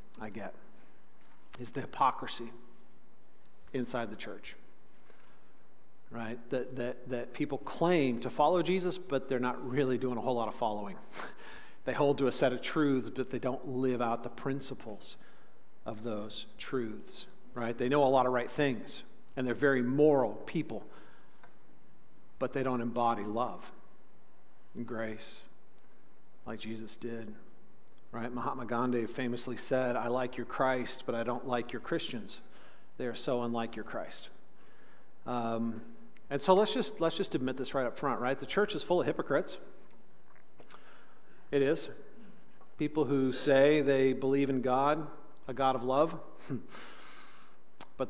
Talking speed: 150 wpm